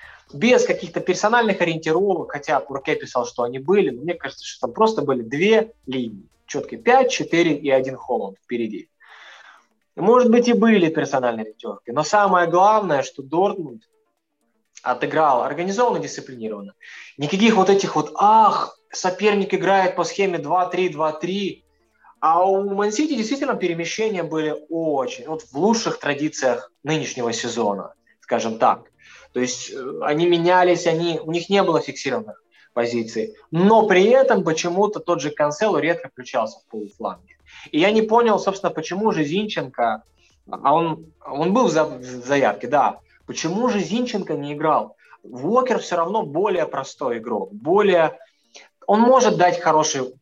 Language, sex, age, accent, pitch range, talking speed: Russian, male, 20-39, native, 150-210 Hz, 140 wpm